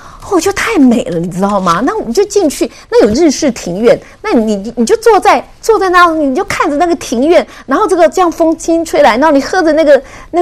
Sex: female